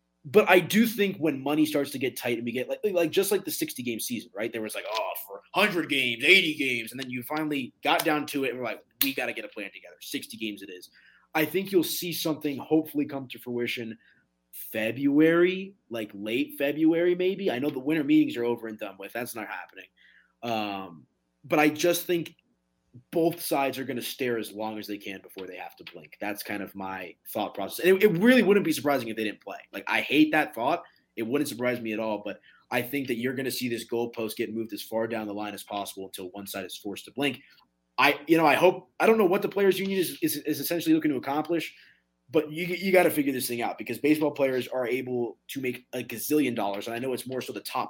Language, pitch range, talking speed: English, 110-165 Hz, 250 wpm